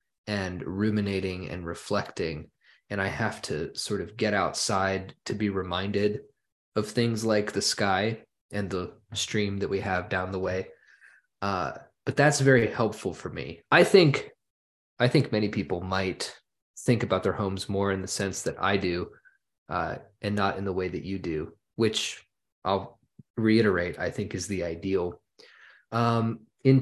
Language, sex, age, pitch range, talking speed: English, male, 20-39, 95-120 Hz, 165 wpm